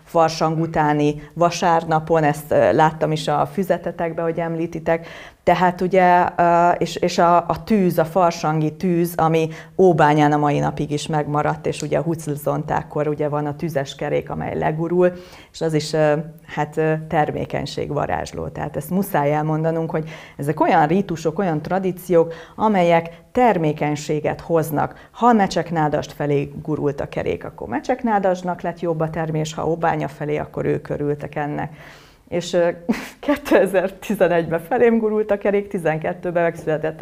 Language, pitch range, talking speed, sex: Hungarian, 155-185 Hz, 130 wpm, female